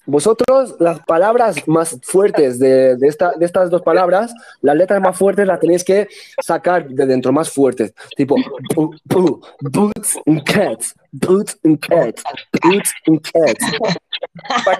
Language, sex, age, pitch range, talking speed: Spanish, male, 30-49, 155-220 Hz, 150 wpm